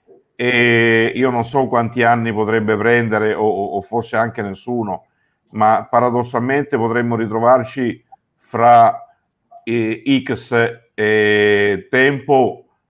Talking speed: 100 wpm